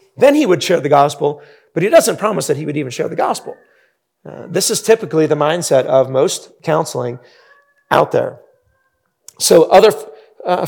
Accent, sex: American, male